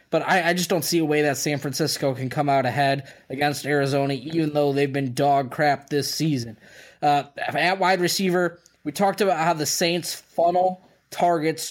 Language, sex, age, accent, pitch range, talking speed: English, male, 20-39, American, 145-175 Hz, 190 wpm